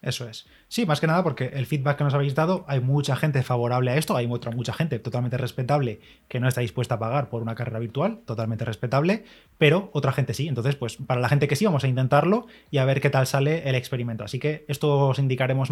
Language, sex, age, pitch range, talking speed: Spanish, male, 20-39, 125-145 Hz, 245 wpm